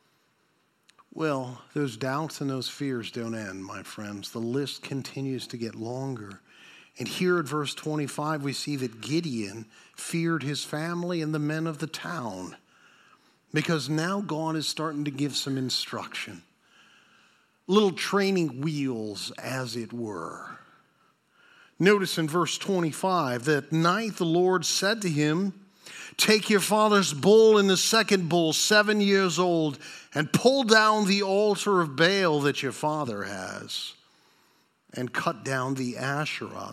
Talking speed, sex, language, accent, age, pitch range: 140 wpm, male, English, American, 50-69, 135-180 Hz